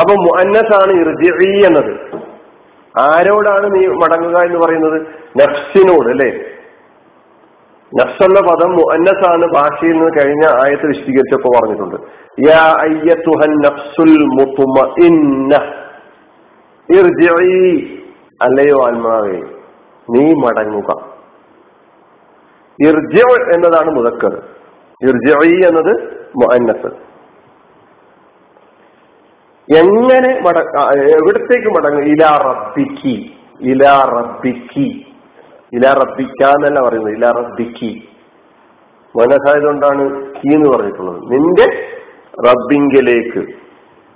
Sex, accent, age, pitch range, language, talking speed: male, native, 50-69, 140-210 Hz, Malayalam, 65 wpm